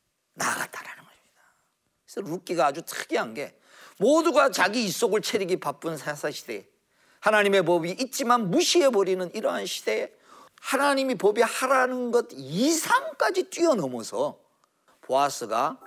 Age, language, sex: 40-59, Korean, male